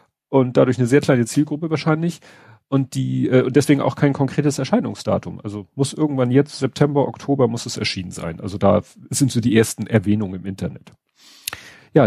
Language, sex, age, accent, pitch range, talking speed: German, male, 40-59, German, 105-135 Hz, 180 wpm